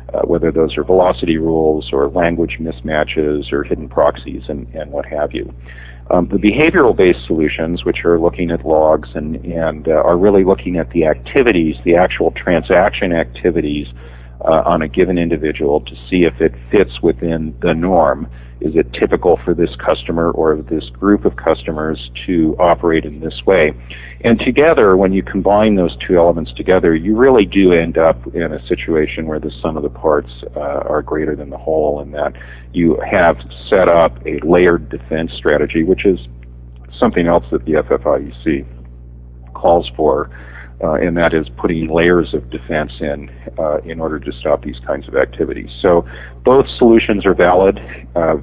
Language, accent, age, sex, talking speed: English, American, 50-69, male, 175 wpm